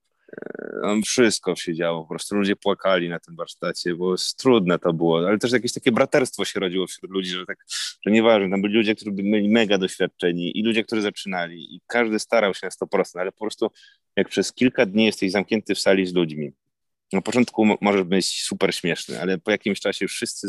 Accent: native